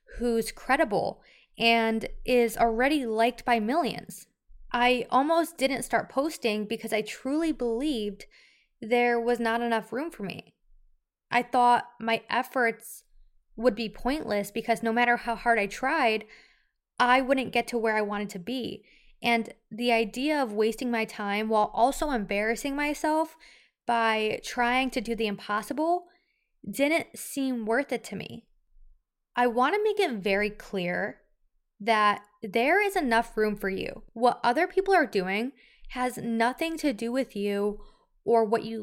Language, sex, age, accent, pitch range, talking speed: English, female, 20-39, American, 210-255 Hz, 150 wpm